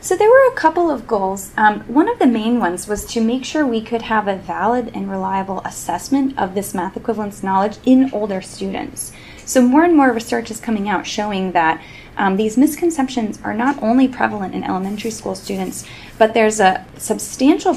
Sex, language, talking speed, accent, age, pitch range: female, English, 195 wpm, American, 10-29, 190-240 Hz